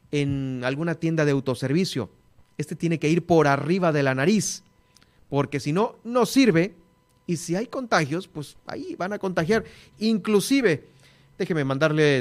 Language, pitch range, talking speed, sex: Spanish, 130-170 Hz, 150 wpm, male